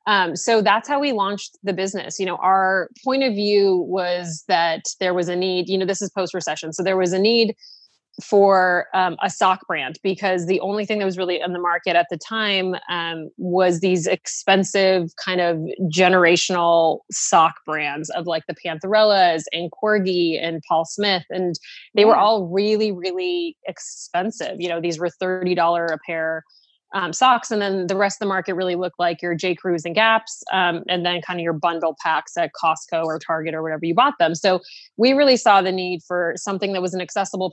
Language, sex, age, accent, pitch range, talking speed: English, female, 20-39, American, 170-200 Hz, 200 wpm